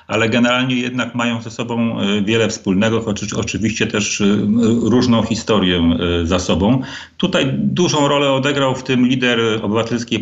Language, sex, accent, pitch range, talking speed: Polish, male, native, 95-115 Hz, 135 wpm